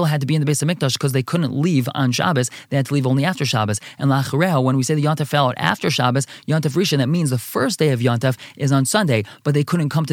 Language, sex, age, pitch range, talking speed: English, male, 20-39, 130-160 Hz, 285 wpm